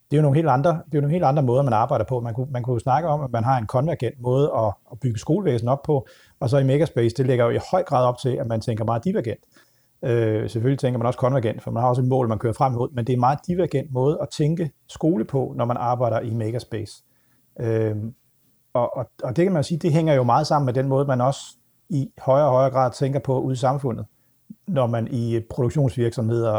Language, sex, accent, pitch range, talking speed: Danish, male, native, 120-145 Hz, 260 wpm